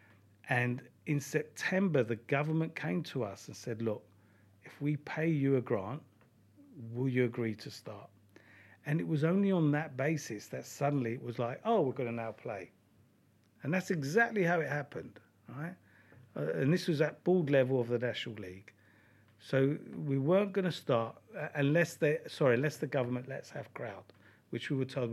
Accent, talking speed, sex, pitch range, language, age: British, 180 wpm, male, 110-140 Hz, English, 50-69